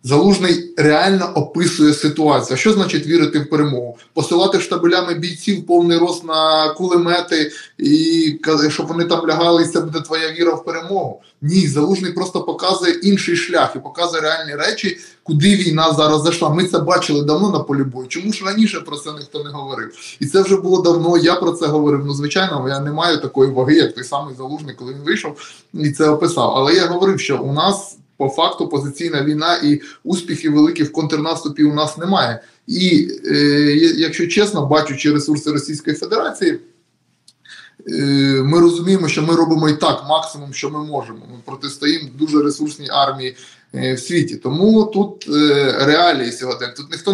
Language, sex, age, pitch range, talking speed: Ukrainian, male, 20-39, 145-175 Hz, 170 wpm